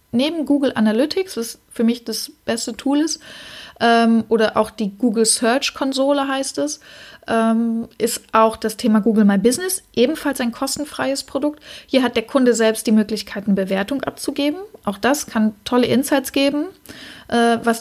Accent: German